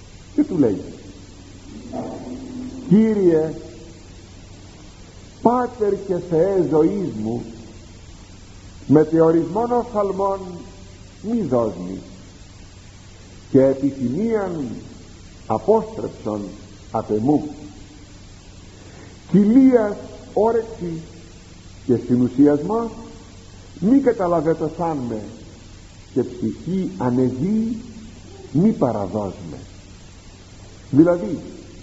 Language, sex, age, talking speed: Greek, male, 50-69, 60 wpm